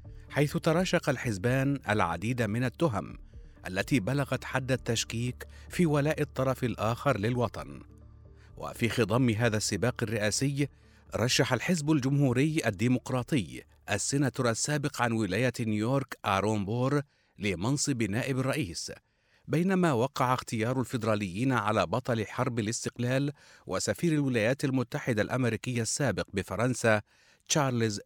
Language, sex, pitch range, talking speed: Arabic, male, 110-135 Hz, 105 wpm